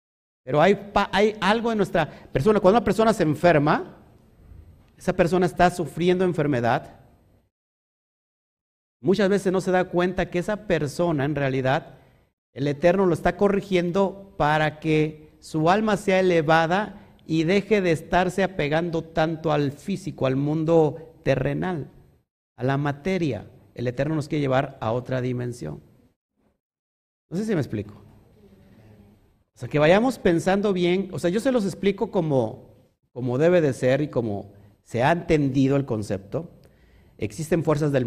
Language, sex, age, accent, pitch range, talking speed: Spanish, male, 50-69, Mexican, 120-180 Hz, 145 wpm